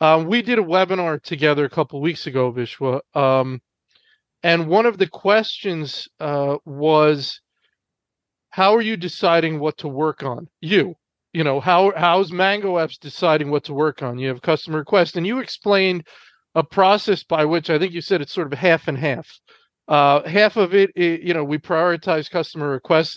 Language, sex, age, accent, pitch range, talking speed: English, male, 40-59, American, 160-210 Hz, 185 wpm